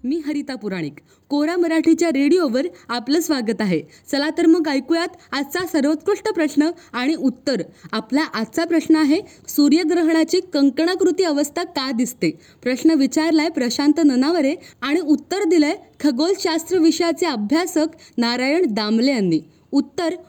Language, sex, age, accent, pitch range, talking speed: Marathi, female, 20-39, native, 270-335 Hz, 120 wpm